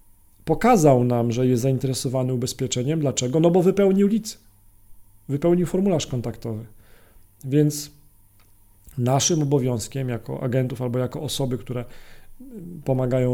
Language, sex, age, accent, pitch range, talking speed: Polish, male, 40-59, native, 120-150 Hz, 110 wpm